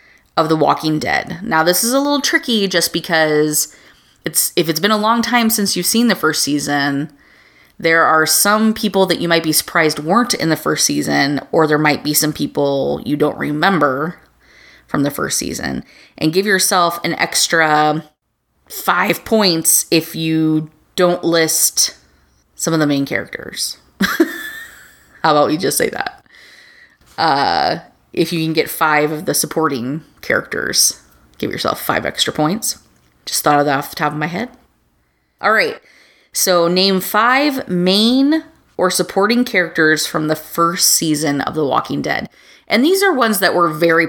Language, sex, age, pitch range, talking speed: English, female, 20-39, 155-205 Hz, 165 wpm